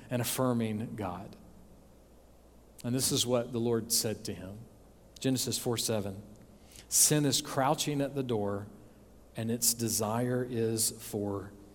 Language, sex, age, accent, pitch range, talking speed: English, male, 40-59, American, 110-150 Hz, 130 wpm